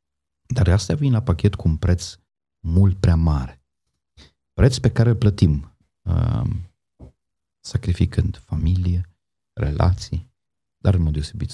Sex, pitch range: male, 90-115 Hz